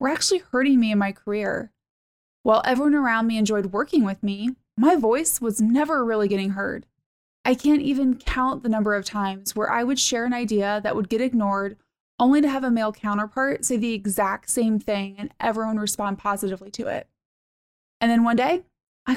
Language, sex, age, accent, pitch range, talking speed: English, female, 20-39, American, 205-265 Hz, 195 wpm